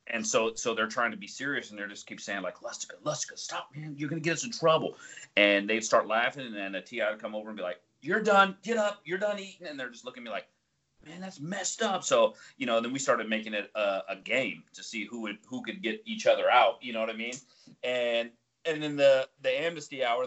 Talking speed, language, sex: 265 wpm, English, male